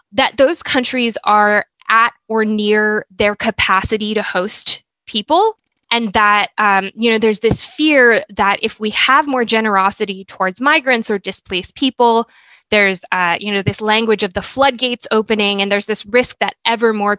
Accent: American